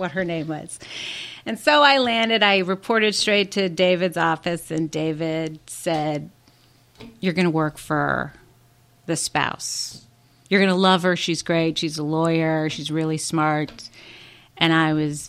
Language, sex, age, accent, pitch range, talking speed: English, female, 40-59, American, 150-185 Hz, 155 wpm